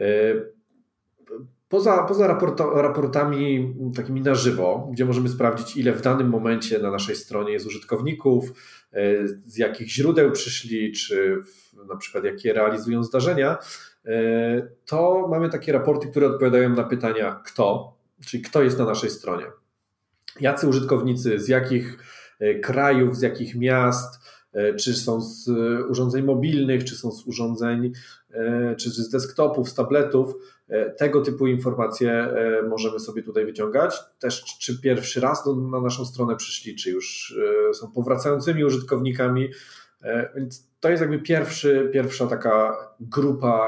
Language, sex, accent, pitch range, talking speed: Polish, male, native, 115-145 Hz, 125 wpm